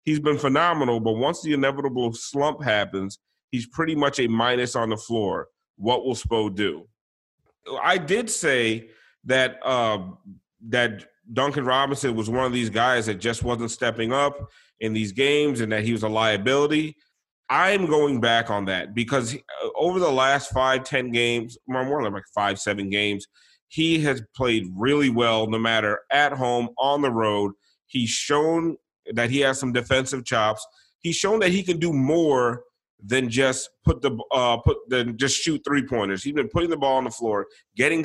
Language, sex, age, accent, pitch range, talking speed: English, male, 30-49, American, 110-140 Hz, 180 wpm